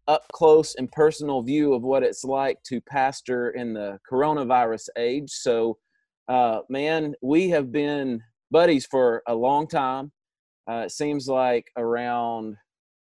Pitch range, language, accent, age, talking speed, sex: 115-140 Hz, English, American, 30-49, 145 wpm, male